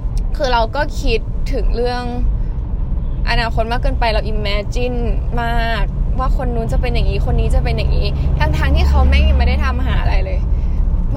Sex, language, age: female, Thai, 10-29